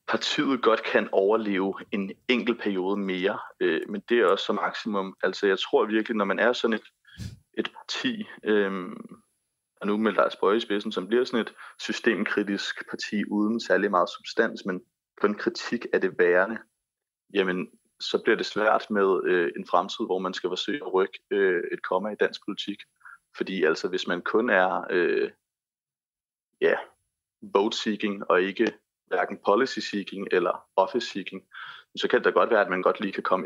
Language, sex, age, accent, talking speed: Danish, male, 30-49, native, 170 wpm